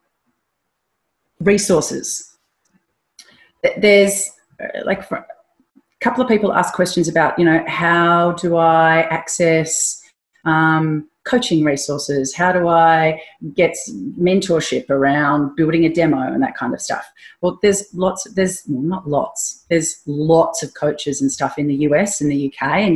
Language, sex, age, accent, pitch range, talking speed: English, female, 30-49, Australian, 145-175 Hz, 135 wpm